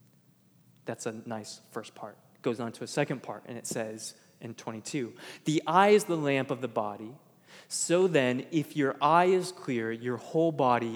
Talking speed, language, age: 190 wpm, English, 20-39